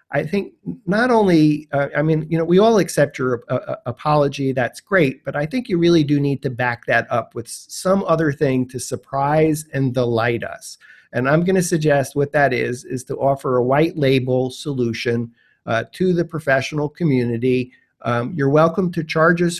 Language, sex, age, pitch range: English, male, 50-69, 130-175 Hz